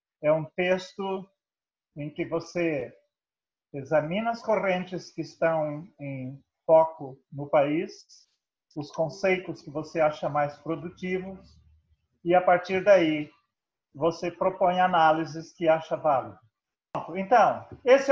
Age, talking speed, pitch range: 40-59, 115 wpm, 160-195 Hz